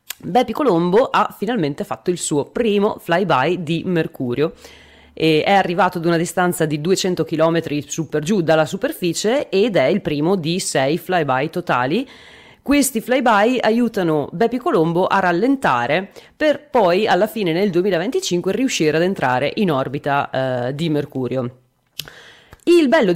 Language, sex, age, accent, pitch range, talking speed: Italian, female, 30-49, native, 155-215 Hz, 145 wpm